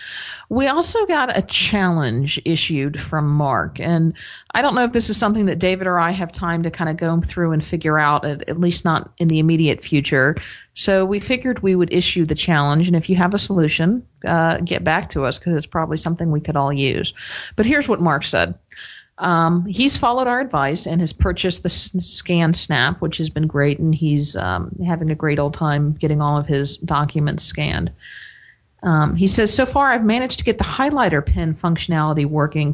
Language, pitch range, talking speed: English, 150-185 Hz, 205 wpm